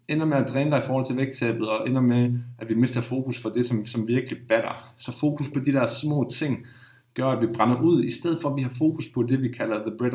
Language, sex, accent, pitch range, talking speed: Danish, male, native, 115-135 Hz, 280 wpm